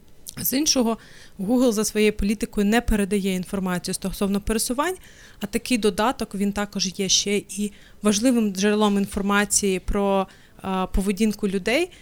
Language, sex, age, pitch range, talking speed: Ukrainian, female, 30-49, 195-230 Hz, 125 wpm